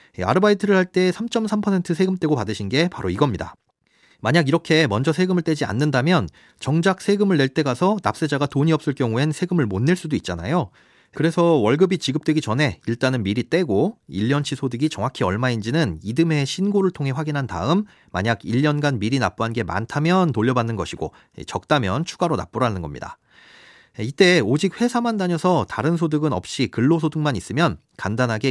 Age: 40-59